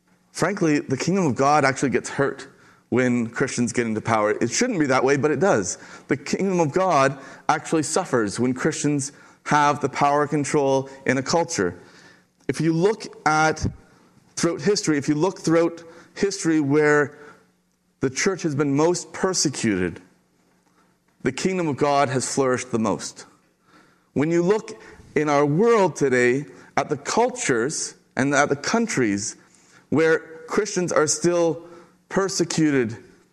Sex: male